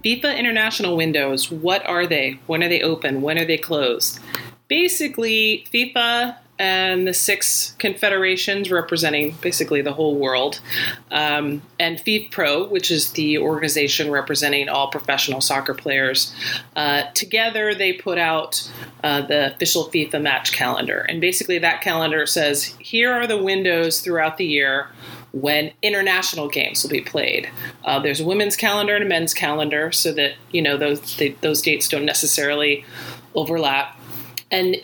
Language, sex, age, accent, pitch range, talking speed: English, female, 30-49, American, 145-195 Hz, 150 wpm